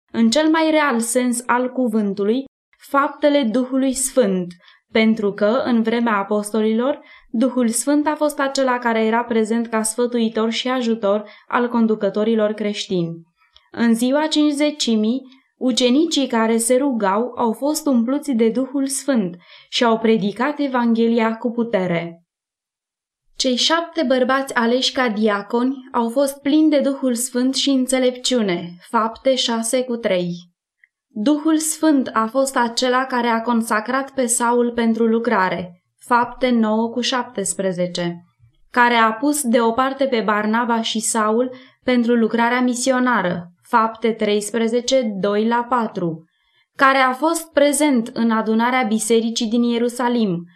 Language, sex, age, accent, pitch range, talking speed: Romanian, female, 20-39, native, 220-260 Hz, 130 wpm